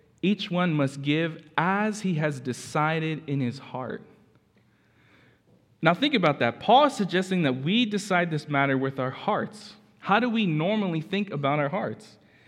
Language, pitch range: English, 130-170 Hz